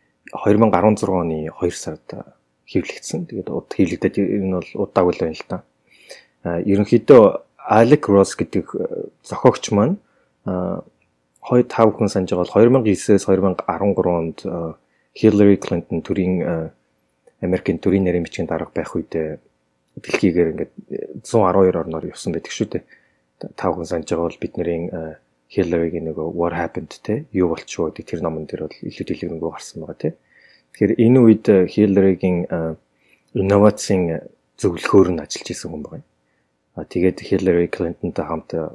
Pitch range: 75-95 Hz